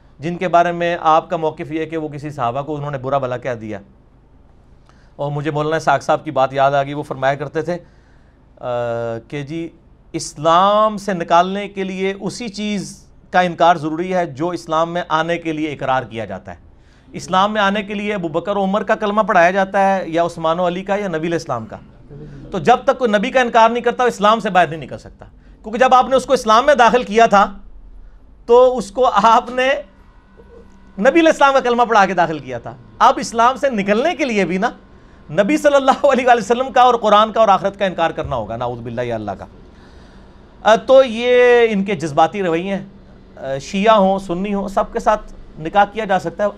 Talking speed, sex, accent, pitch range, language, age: 150 wpm, male, Indian, 155-230 Hz, English, 40-59